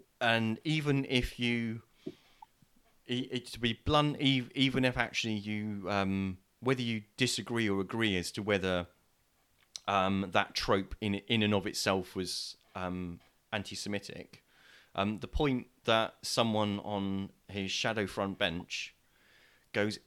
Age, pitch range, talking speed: 30-49, 95-115 Hz, 130 wpm